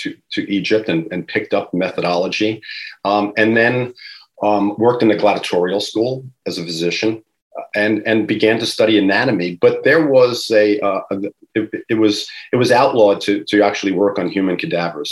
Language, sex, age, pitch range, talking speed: English, male, 40-59, 95-110 Hz, 175 wpm